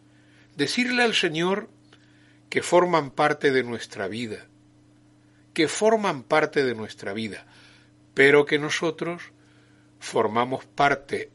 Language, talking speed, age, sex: Spanish, 105 wpm, 60-79, male